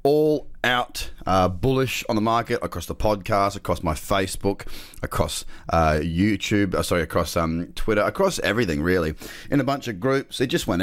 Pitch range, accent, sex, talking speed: 90-120 Hz, Australian, male, 175 wpm